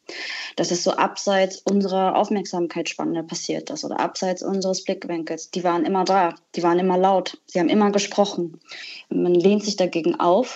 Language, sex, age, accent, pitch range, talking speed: German, female, 20-39, German, 170-195 Hz, 165 wpm